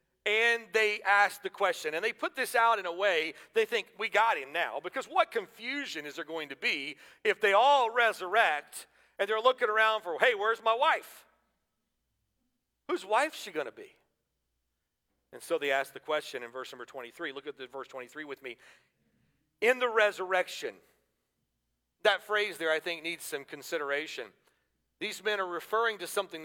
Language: English